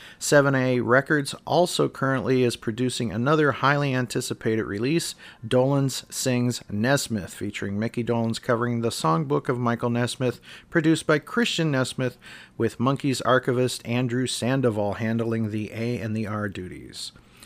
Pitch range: 115-150 Hz